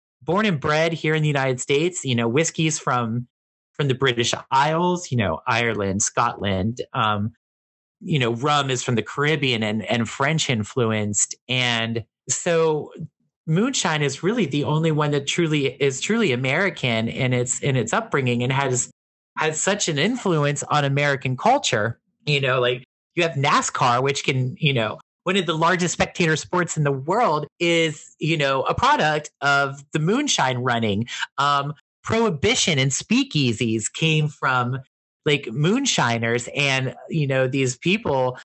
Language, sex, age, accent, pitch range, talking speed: English, male, 30-49, American, 125-170 Hz, 155 wpm